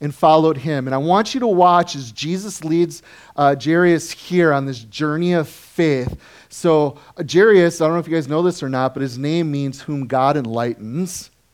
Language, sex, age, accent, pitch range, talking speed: English, male, 30-49, American, 130-175 Hz, 210 wpm